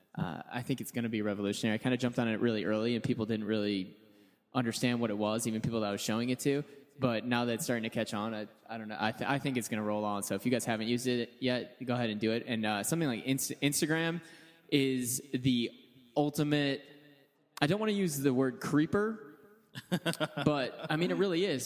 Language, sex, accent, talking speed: English, male, American, 245 wpm